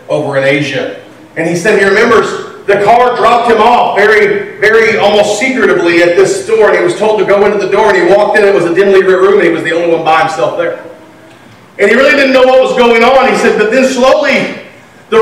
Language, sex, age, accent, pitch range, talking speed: English, male, 40-59, American, 220-275 Hz, 245 wpm